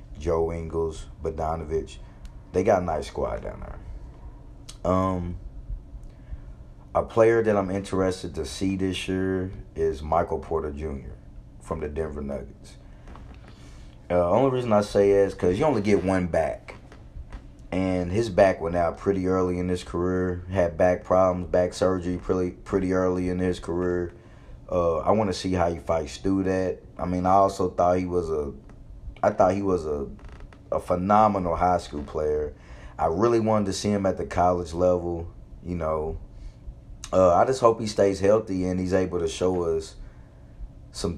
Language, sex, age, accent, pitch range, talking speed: English, male, 30-49, American, 80-95 Hz, 170 wpm